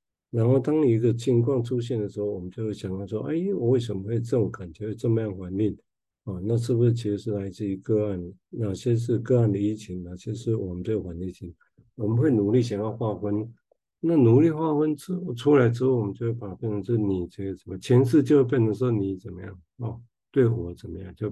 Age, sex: 50-69, male